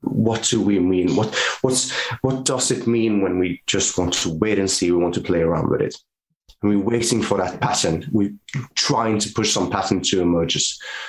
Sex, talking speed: male, 210 wpm